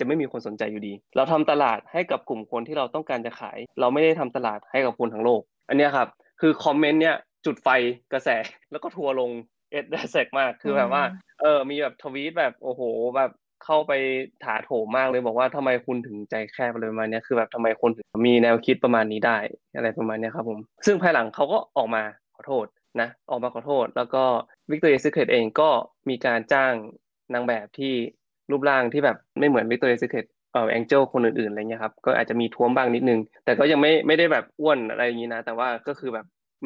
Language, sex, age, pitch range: Thai, male, 20-39, 115-140 Hz